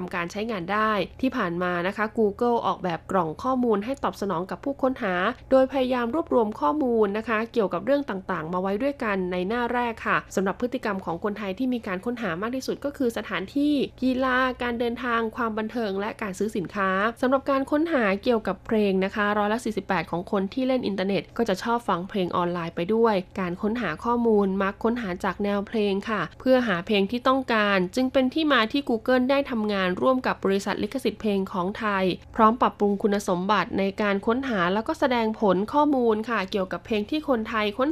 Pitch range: 195-245 Hz